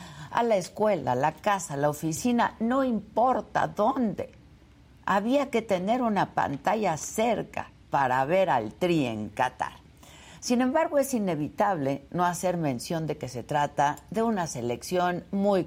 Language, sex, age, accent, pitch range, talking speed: Spanish, female, 50-69, Mexican, 140-215 Hz, 150 wpm